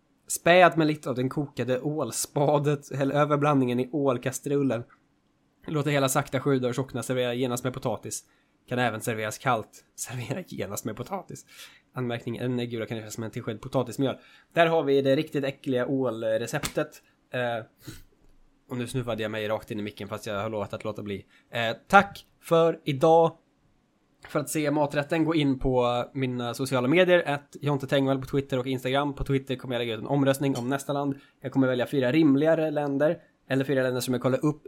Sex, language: male, Swedish